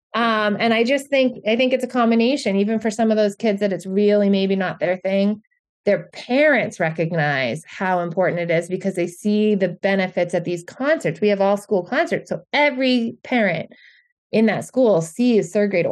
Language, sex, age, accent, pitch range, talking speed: English, female, 30-49, American, 170-215 Hz, 195 wpm